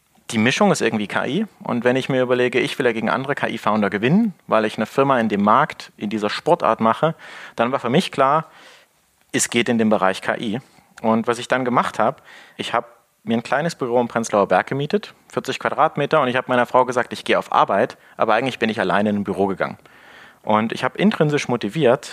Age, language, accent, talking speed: 30-49, German, German, 220 wpm